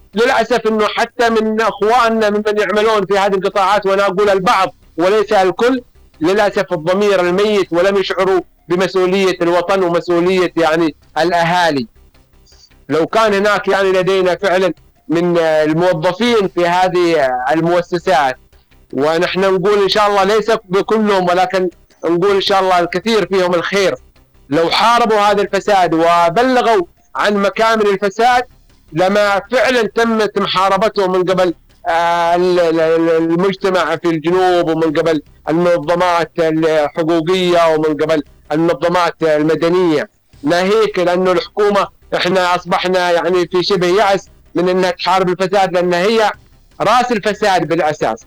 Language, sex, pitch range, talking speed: Arabic, male, 170-205 Hz, 120 wpm